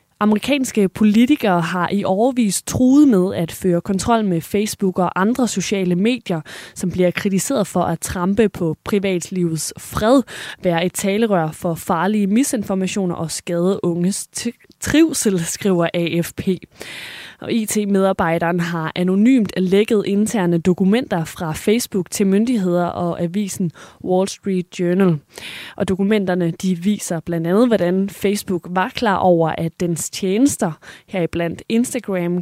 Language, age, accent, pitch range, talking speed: Danish, 20-39, native, 175-215 Hz, 130 wpm